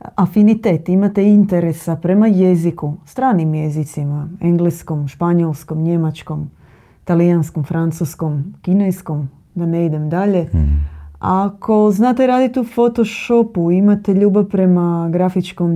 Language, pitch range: Croatian, 165-195 Hz